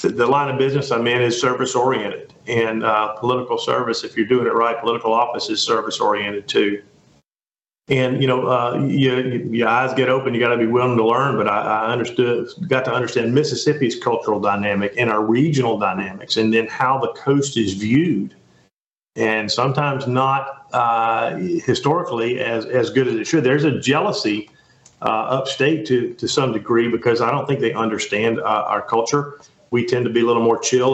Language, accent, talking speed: English, American, 190 wpm